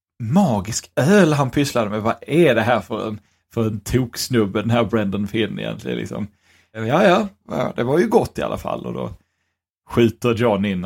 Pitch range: 110-130 Hz